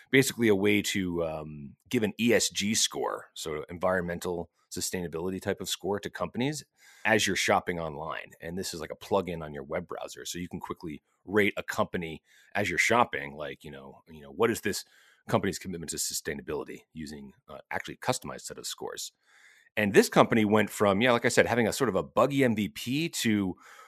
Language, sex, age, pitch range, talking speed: English, male, 30-49, 95-125 Hz, 200 wpm